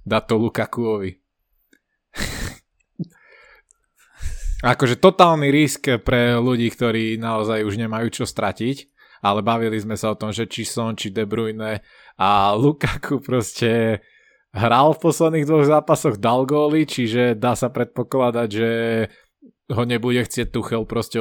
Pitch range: 105-125 Hz